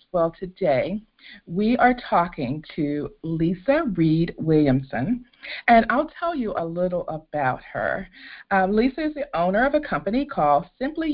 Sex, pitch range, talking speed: female, 155-235 Hz, 145 wpm